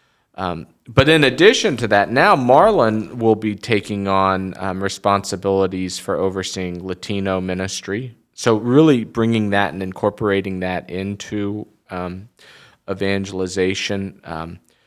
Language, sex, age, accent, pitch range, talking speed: English, male, 40-59, American, 90-110 Hz, 115 wpm